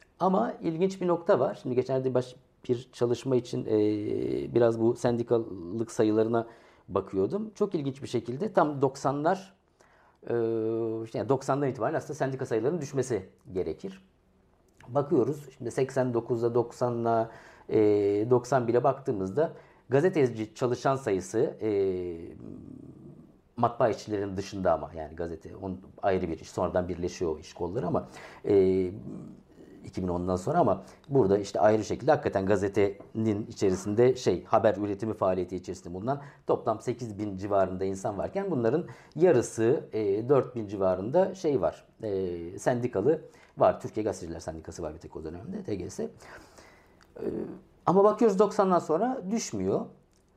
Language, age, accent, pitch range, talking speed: Turkish, 50-69, native, 95-135 Hz, 125 wpm